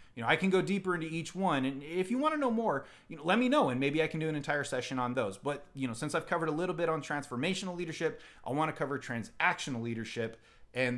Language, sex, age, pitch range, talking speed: English, male, 30-49, 120-170 Hz, 275 wpm